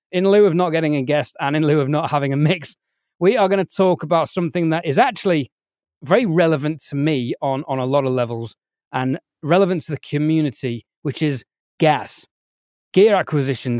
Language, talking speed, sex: English, 195 wpm, male